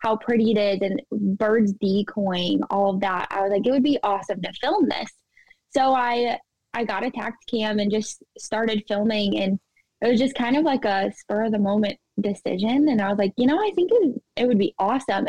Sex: female